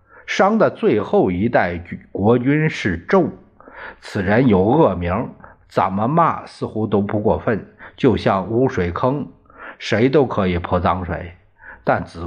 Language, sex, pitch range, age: Chinese, male, 95-150 Hz, 50-69